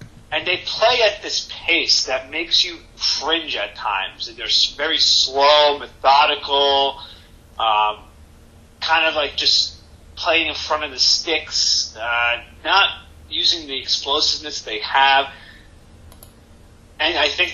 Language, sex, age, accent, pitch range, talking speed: English, male, 30-49, American, 105-145 Hz, 130 wpm